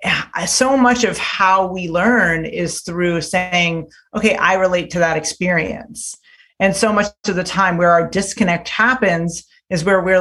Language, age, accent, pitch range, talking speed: English, 30-49, American, 170-210 Hz, 165 wpm